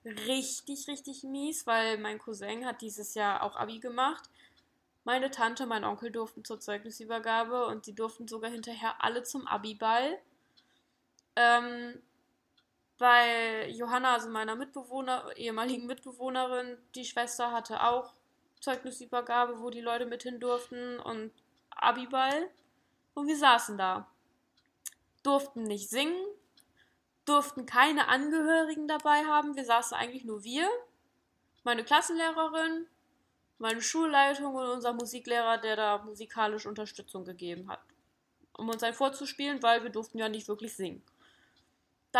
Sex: female